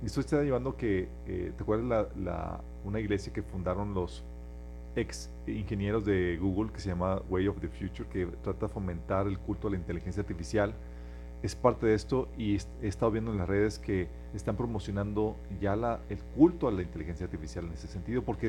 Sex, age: male, 40-59